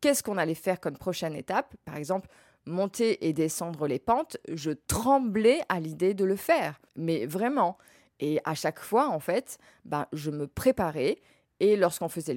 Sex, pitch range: female, 155-205 Hz